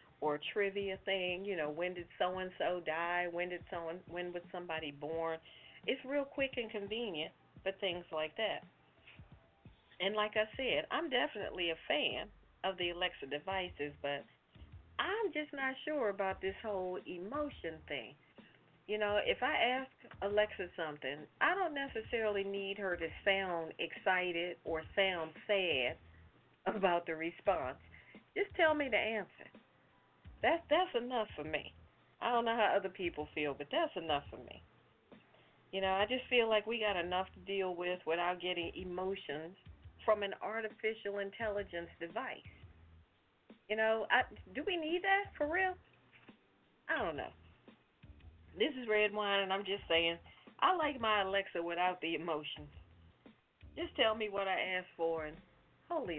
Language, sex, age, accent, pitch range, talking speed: English, female, 40-59, American, 165-220 Hz, 160 wpm